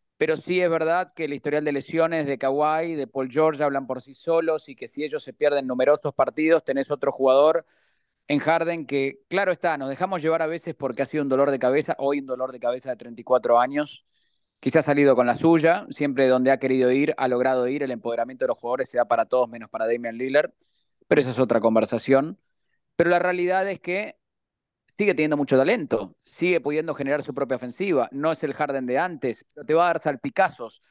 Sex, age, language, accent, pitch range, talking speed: male, 30-49, Spanish, Argentinian, 135-165 Hz, 220 wpm